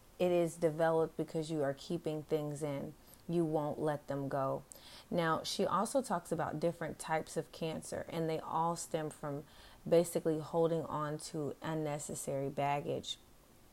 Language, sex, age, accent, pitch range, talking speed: English, female, 30-49, American, 155-180 Hz, 150 wpm